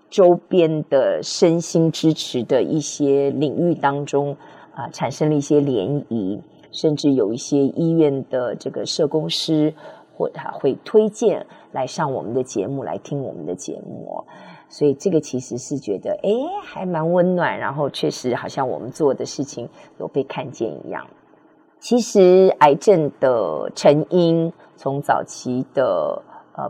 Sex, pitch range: female, 140-170 Hz